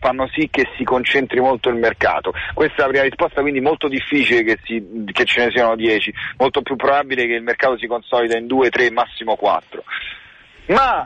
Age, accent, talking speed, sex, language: 40-59, native, 200 wpm, male, Italian